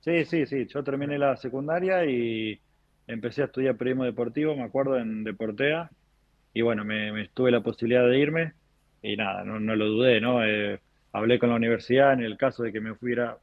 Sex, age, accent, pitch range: male, 20-39, Argentinian, 110-135 Hz